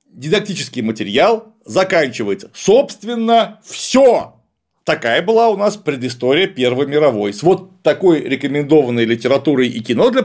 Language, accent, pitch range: Russian, native, 145-215 Hz